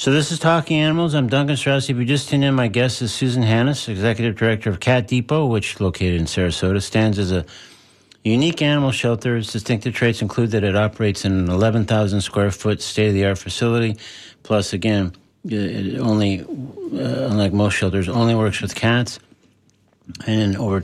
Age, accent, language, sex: 50-69, American, English, male